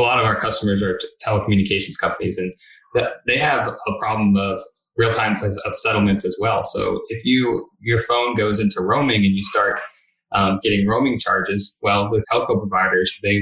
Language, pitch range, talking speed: English, 95-115 Hz, 175 wpm